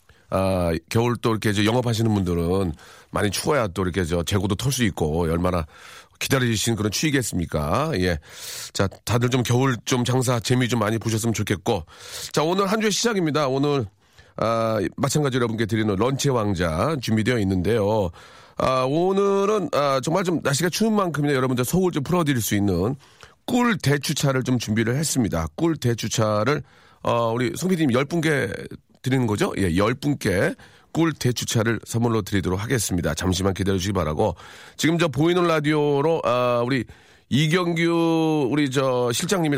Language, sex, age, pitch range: Korean, male, 40-59, 100-140 Hz